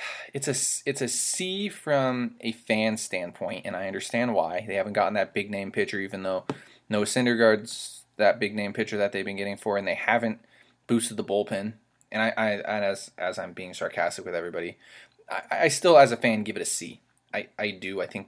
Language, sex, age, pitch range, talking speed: English, male, 20-39, 105-120 Hz, 210 wpm